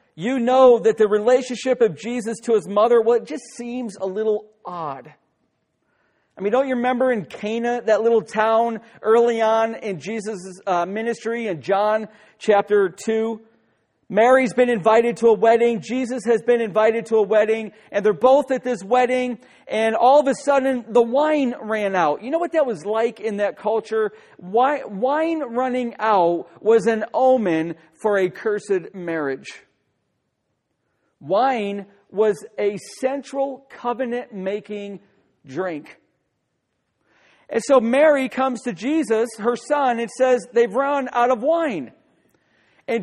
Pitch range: 210-255 Hz